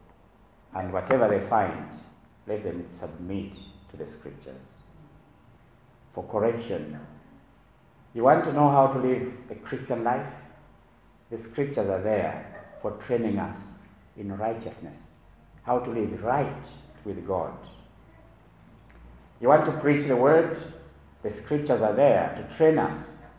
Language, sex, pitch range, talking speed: English, male, 115-190 Hz, 130 wpm